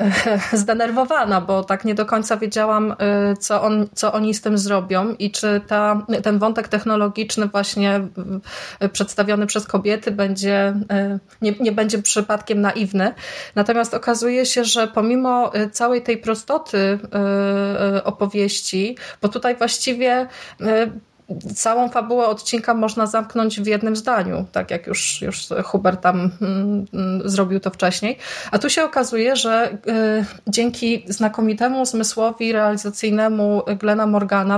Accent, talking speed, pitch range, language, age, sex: native, 120 wpm, 200-225 Hz, Polish, 20-39, female